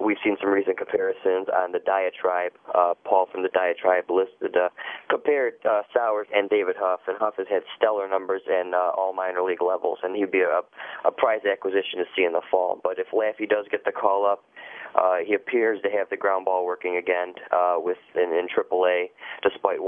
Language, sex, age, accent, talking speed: English, male, 30-49, American, 210 wpm